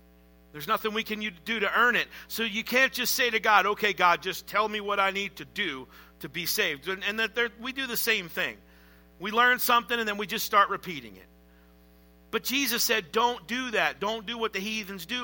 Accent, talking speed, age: American, 230 wpm, 50-69